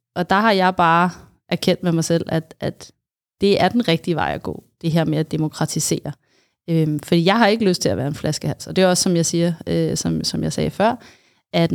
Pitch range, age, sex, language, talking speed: 165-200 Hz, 20-39, female, Danish, 245 wpm